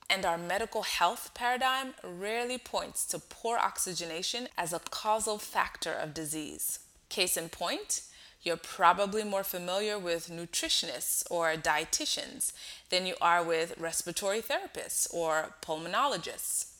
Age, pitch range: 20-39, 170-230 Hz